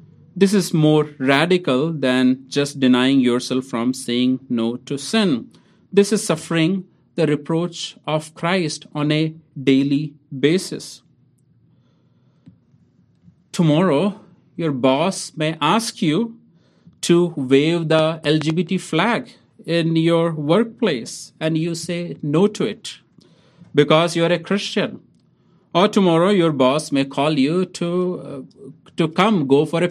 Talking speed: 125 wpm